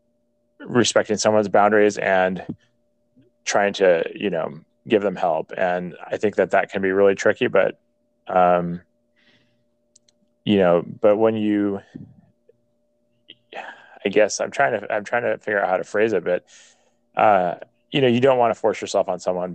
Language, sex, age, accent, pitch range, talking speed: English, male, 20-39, American, 95-120 Hz, 165 wpm